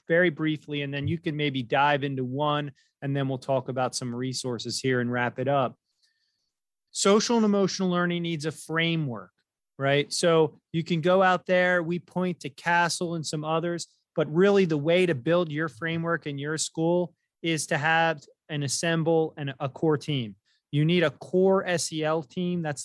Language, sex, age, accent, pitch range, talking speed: English, male, 30-49, American, 140-175 Hz, 185 wpm